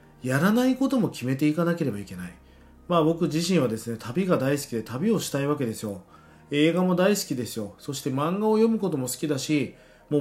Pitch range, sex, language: 115-180 Hz, male, Japanese